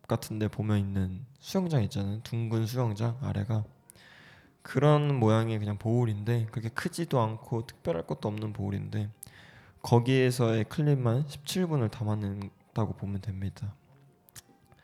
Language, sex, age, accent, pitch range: Korean, male, 20-39, native, 110-135 Hz